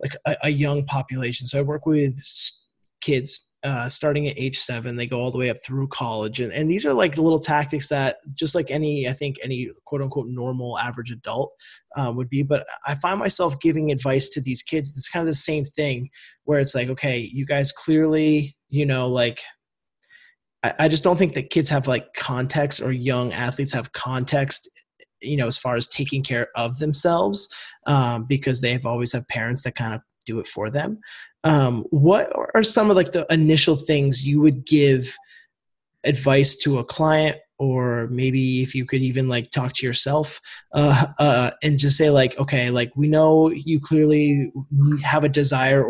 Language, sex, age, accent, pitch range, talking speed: English, male, 20-39, American, 125-150 Hz, 195 wpm